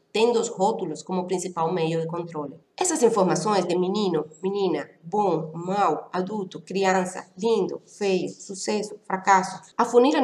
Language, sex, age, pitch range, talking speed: Portuguese, female, 30-49, 165-205 Hz, 130 wpm